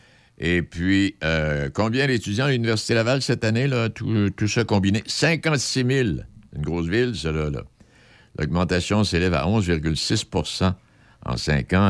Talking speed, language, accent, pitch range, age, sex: 145 wpm, French, French, 75-105 Hz, 60-79, male